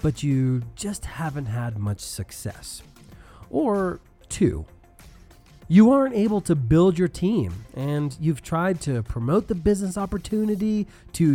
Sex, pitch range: male, 125-205 Hz